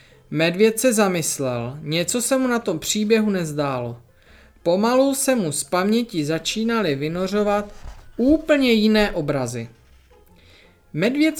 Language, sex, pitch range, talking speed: Czech, male, 140-215 Hz, 110 wpm